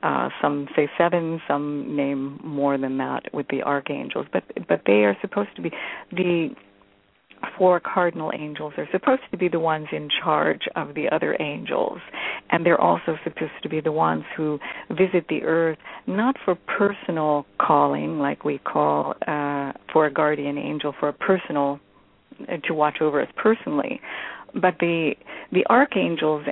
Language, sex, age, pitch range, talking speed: English, female, 50-69, 140-170 Hz, 165 wpm